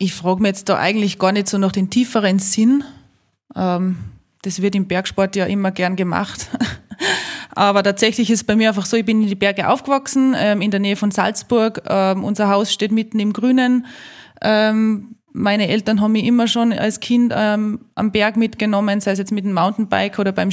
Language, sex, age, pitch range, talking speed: German, female, 20-39, 190-215 Hz, 190 wpm